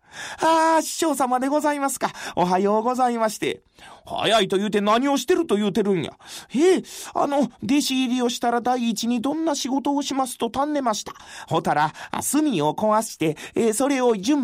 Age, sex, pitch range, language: 30-49, male, 205-295 Hz, Japanese